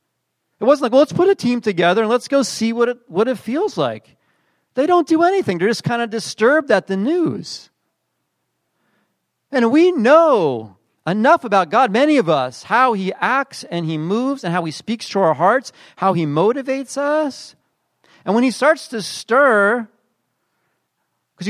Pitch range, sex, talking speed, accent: 180-275 Hz, male, 180 wpm, American